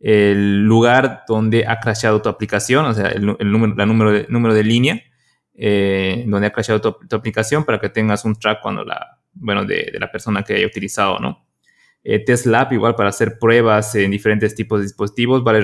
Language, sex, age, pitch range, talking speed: Spanish, male, 20-39, 105-120 Hz, 205 wpm